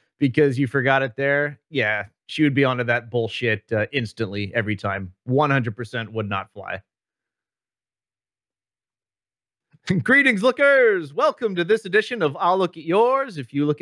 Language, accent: English, American